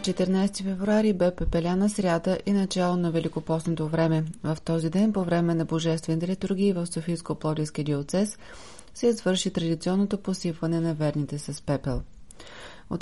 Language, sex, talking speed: Bulgarian, female, 145 wpm